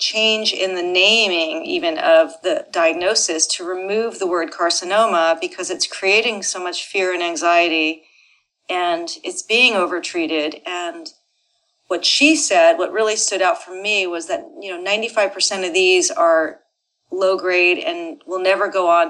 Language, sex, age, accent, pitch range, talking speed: English, female, 40-59, American, 175-235 Hz, 155 wpm